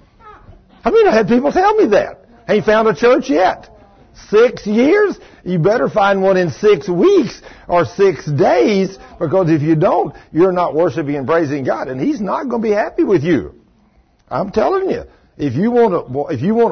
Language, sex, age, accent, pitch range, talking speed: English, male, 60-79, American, 125-205 Hz, 195 wpm